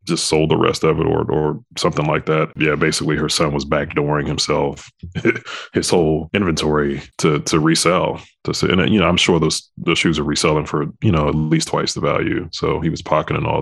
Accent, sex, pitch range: American, male, 75-90 Hz